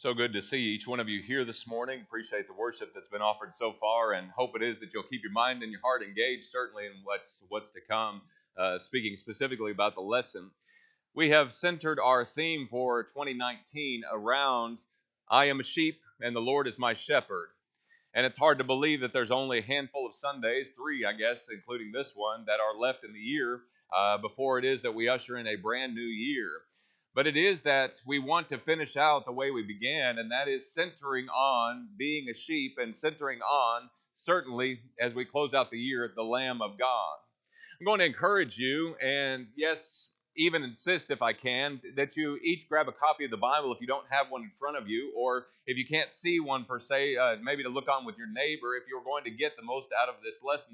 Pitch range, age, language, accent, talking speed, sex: 125-160 Hz, 30-49, English, American, 225 wpm, male